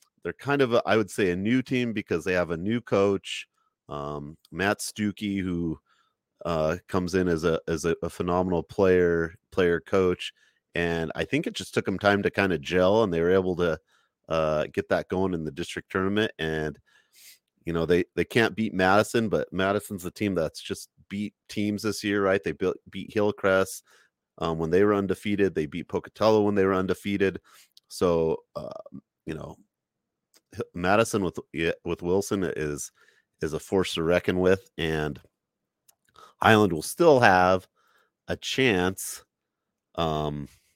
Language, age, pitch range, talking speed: English, 30-49, 80-100 Hz, 170 wpm